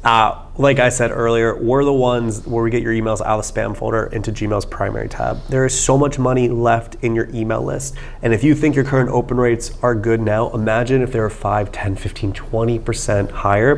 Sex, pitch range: male, 110-140 Hz